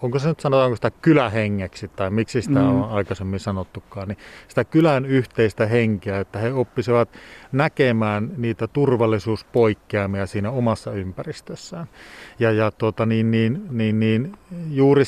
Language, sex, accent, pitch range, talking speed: Finnish, male, native, 105-130 Hz, 115 wpm